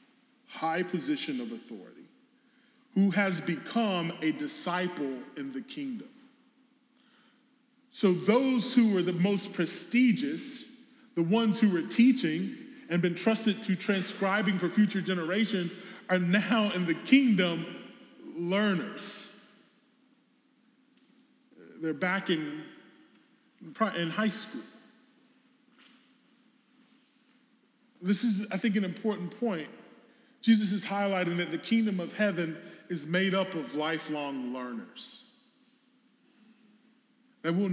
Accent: American